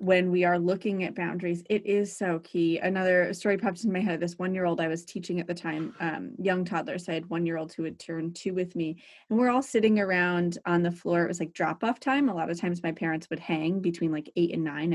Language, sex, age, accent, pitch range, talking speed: English, female, 30-49, American, 170-215 Hz, 255 wpm